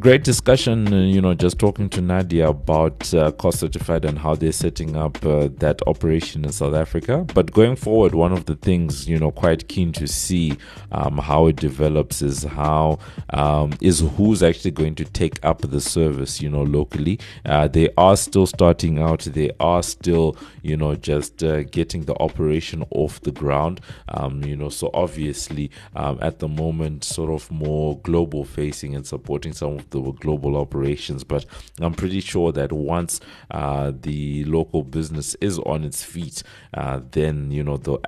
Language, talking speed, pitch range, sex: English, 180 wpm, 70-85 Hz, male